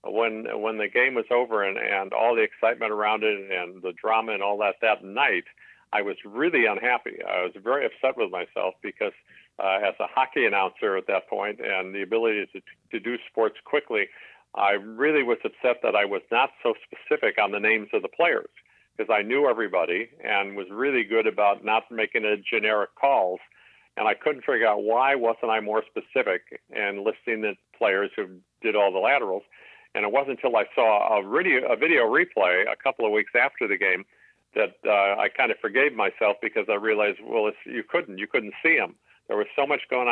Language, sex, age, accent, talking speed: English, male, 50-69, American, 205 wpm